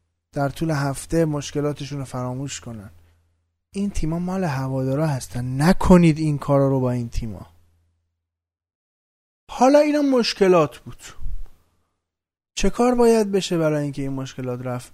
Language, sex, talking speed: Persian, male, 130 wpm